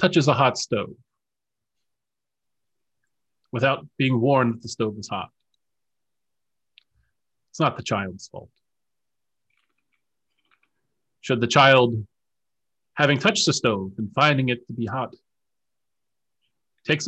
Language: English